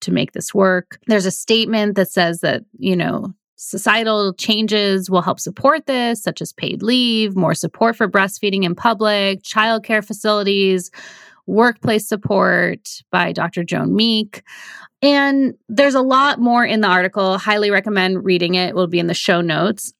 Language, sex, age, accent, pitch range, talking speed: English, female, 30-49, American, 185-235 Hz, 165 wpm